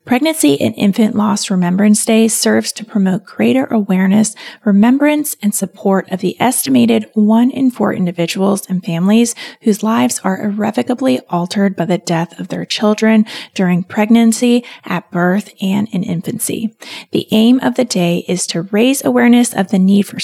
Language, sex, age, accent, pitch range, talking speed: English, female, 30-49, American, 190-240 Hz, 160 wpm